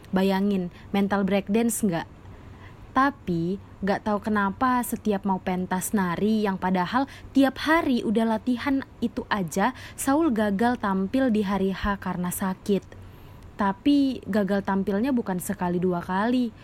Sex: female